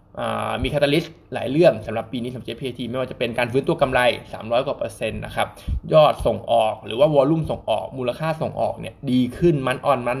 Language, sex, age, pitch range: Thai, male, 20-39, 115-140 Hz